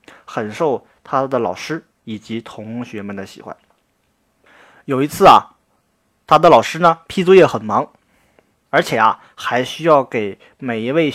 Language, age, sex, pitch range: Chinese, 20-39, male, 130-205 Hz